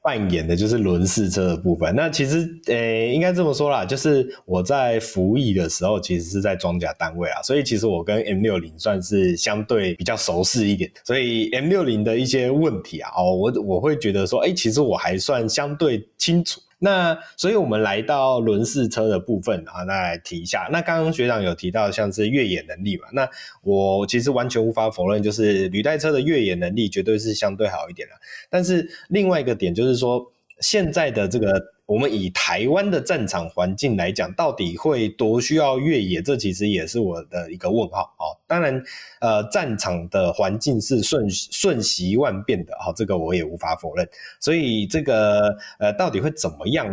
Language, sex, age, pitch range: Chinese, male, 20-39, 100-145 Hz